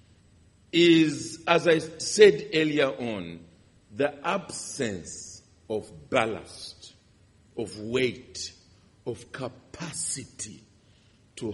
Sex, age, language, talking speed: male, 50-69, English, 80 wpm